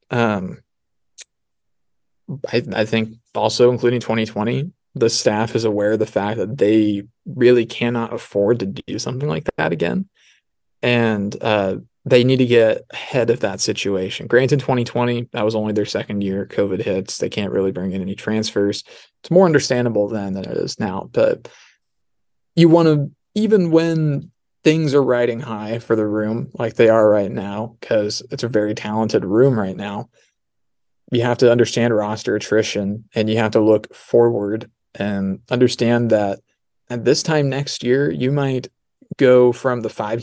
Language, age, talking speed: English, 20-39, 165 wpm